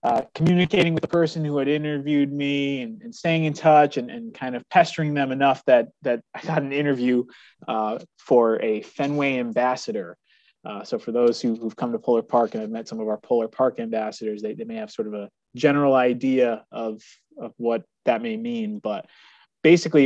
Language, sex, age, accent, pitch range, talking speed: English, male, 20-39, American, 125-175 Hz, 200 wpm